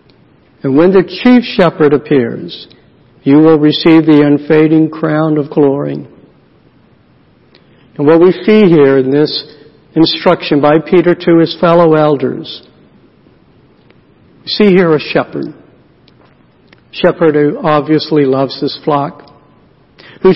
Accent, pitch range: American, 145-170 Hz